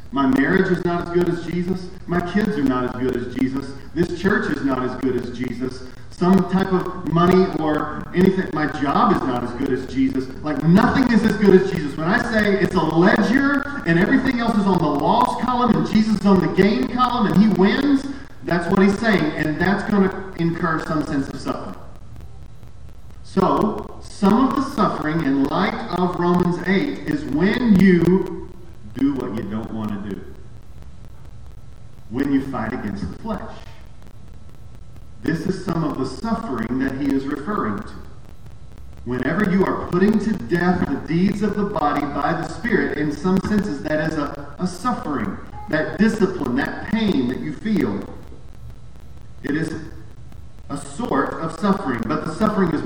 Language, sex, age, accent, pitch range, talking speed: English, male, 40-59, American, 140-195 Hz, 180 wpm